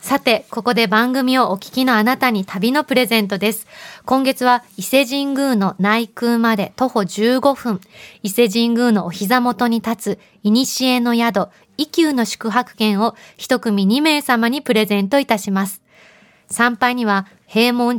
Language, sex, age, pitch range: Japanese, female, 20-39, 210-245 Hz